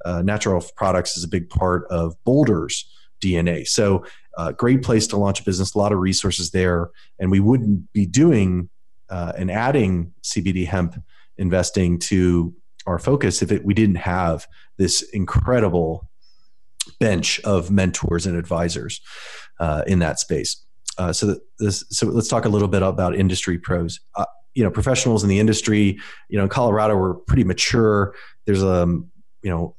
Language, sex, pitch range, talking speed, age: English, male, 90-105 Hz, 175 wpm, 30-49